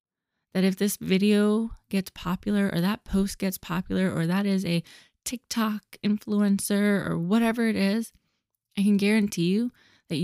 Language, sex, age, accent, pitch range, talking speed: English, female, 20-39, American, 175-205 Hz, 150 wpm